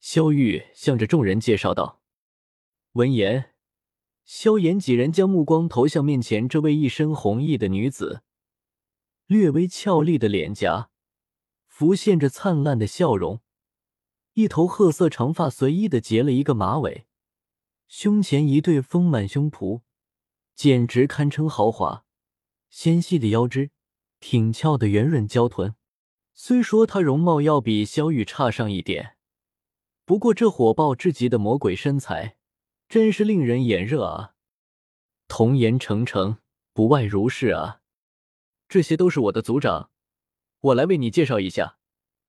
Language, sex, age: Chinese, male, 20-39